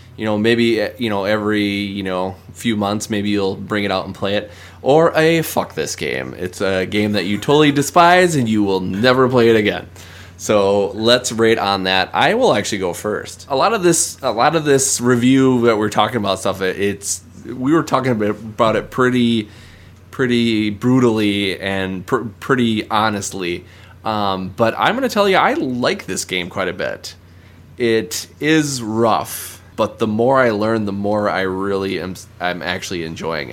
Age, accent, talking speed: 20-39, American, 185 wpm